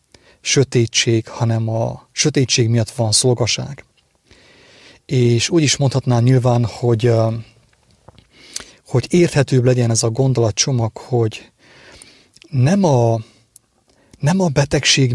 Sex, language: male, English